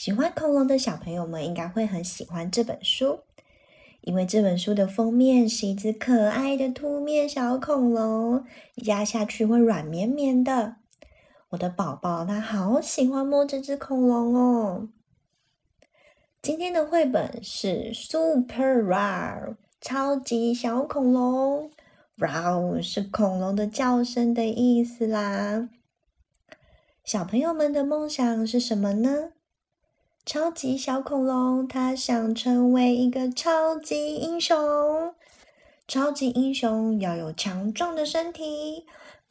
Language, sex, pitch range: Chinese, female, 210-295 Hz